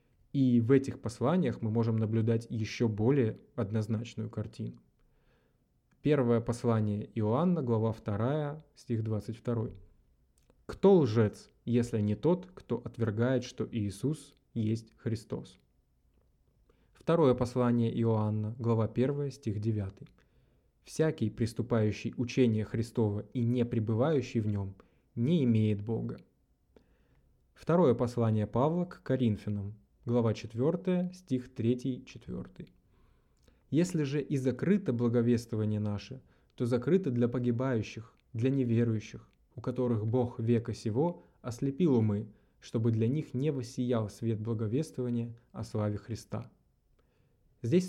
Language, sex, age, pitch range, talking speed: Russian, male, 20-39, 110-130 Hz, 110 wpm